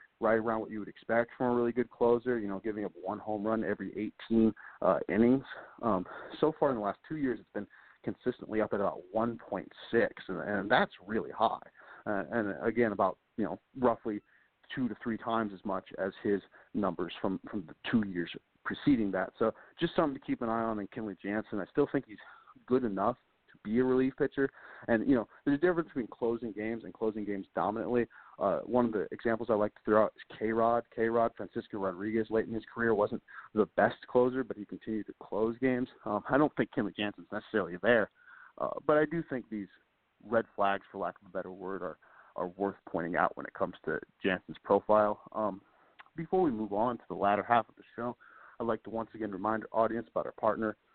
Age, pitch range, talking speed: 40-59, 105-120 Hz, 220 wpm